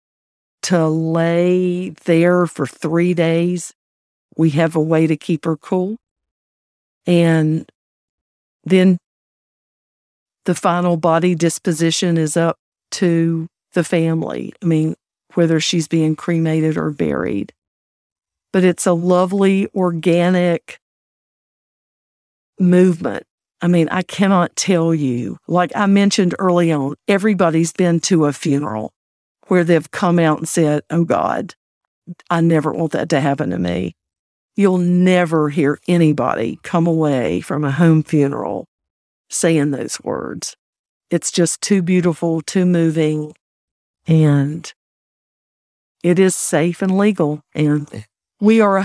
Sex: female